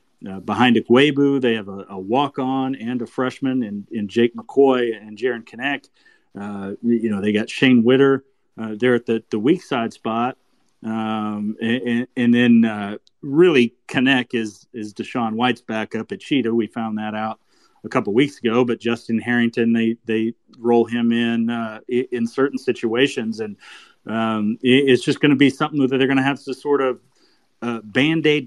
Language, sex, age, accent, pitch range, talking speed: English, male, 40-59, American, 115-140 Hz, 180 wpm